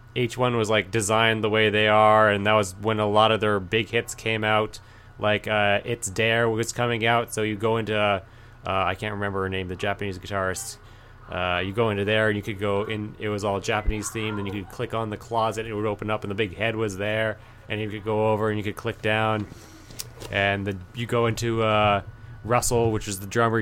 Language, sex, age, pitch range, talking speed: English, male, 20-39, 100-115 Hz, 235 wpm